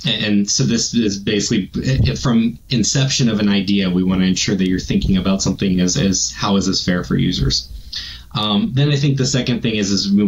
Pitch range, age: 95-115 Hz, 20-39